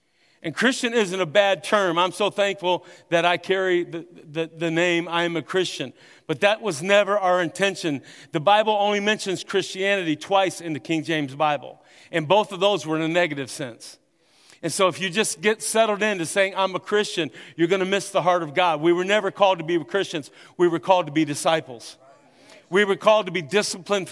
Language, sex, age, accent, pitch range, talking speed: English, male, 50-69, American, 170-220 Hz, 210 wpm